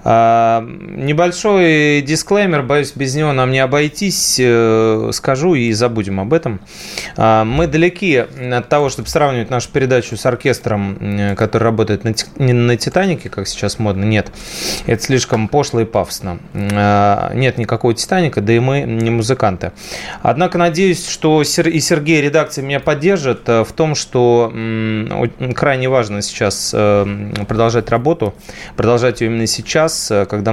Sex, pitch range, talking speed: male, 105-135 Hz, 130 wpm